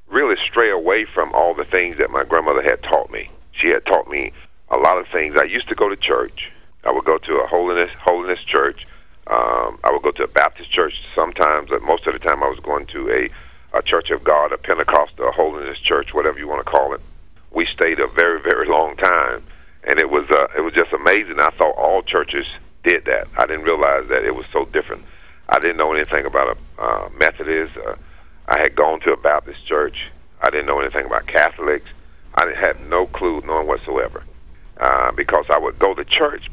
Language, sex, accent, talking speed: English, male, American, 215 wpm